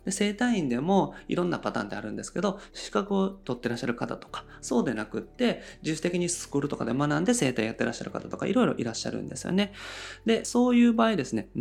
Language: Japanese